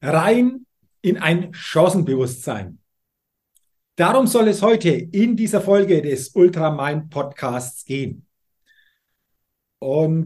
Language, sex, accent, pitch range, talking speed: German, male, German, 150-210 Hz, 90 wpm